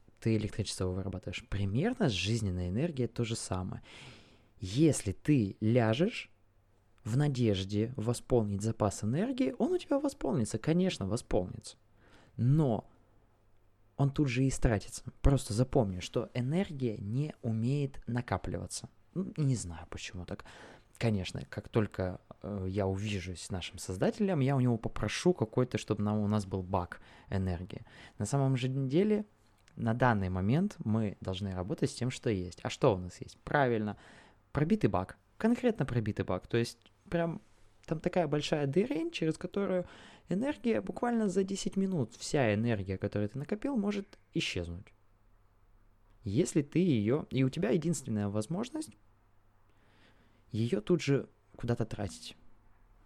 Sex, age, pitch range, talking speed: male, 20-39, 100-140 Hz, 135 wpm